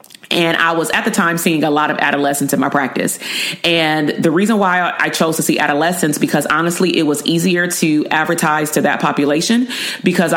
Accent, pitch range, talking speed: American, 150-185 Hz, 195 wpm